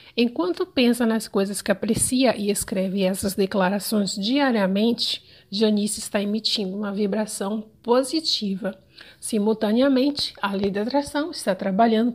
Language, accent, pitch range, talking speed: Portuguese, Brazilian, 210-255 Hz, 120 wpm